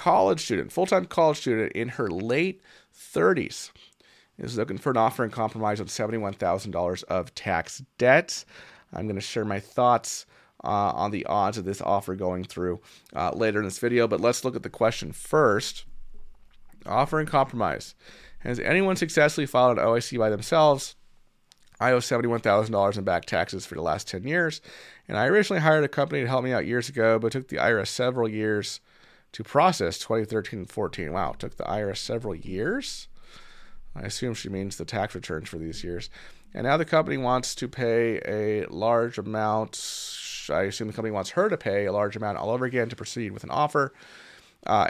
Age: 30-49